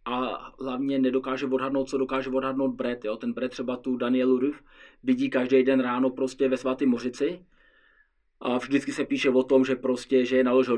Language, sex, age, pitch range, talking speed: Czech, male, 20-39, 125-135 Hz, 185 wpm